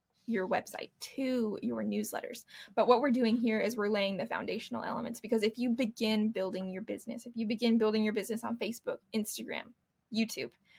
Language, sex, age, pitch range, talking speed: English, female, 20-39, 200-230 Hz, 185 wpm